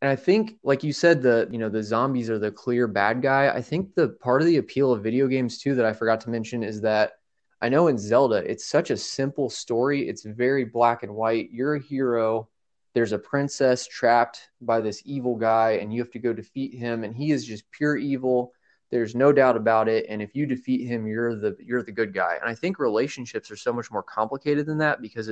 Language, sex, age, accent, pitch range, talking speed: English, male, 20-39, American, 115-135 Hz, 235 wpm